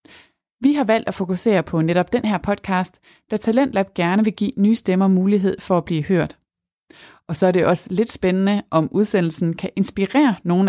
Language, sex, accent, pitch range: Danish, female, native, 170-215 Hz